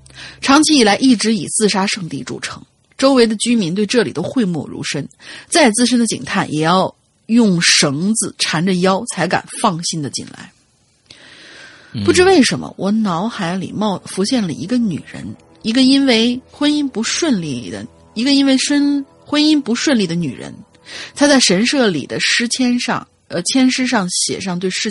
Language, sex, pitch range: Chinese, female, 165-235 Hz